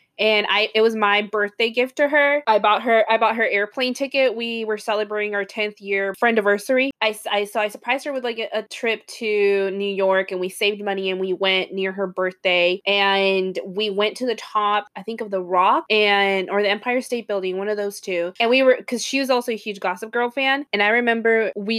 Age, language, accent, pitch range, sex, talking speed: 20-39, English, American, 195-225 Hz, female, 235 wpm